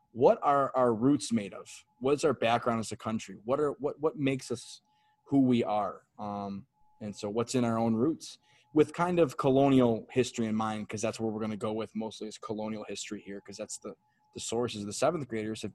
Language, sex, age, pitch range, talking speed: English, male, 20-39, 110-135 Hz, 220 wpm